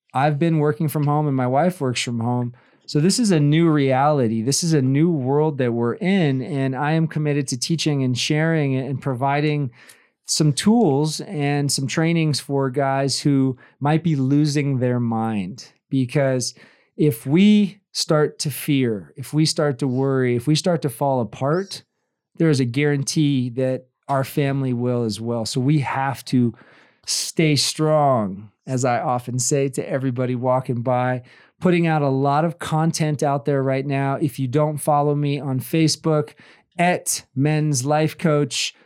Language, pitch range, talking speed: English, 130-155 Hz, 170 wpm